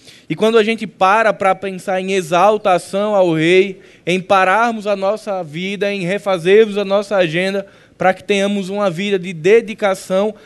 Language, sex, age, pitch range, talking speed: Portuguese, male, 10-29, 185-215 Hz, 160 wpm